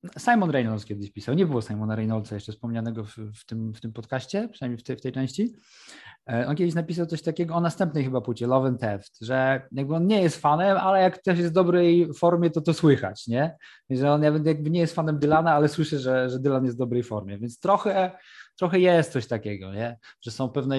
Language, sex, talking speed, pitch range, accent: Polish, male, 220 wpm, 115-155 Hz, native